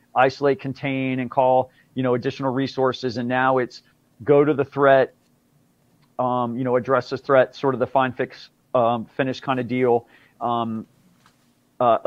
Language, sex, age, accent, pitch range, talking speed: English, male, 40-59, American, 125-145 Hz, 165 wpm